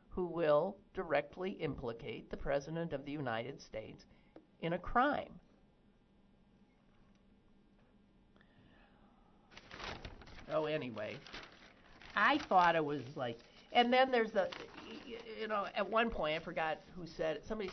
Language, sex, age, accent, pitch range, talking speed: English, male, 50-69, American, 145-220 Hz, 115 wpm